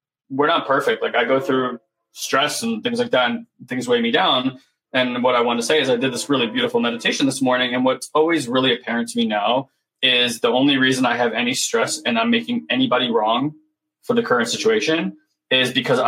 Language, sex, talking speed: English, male, 220 wpm